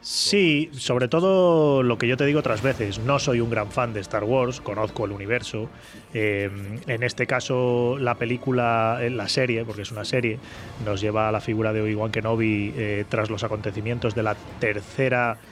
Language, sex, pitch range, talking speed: Spanish, male, 110-130 Hz, 185 wpm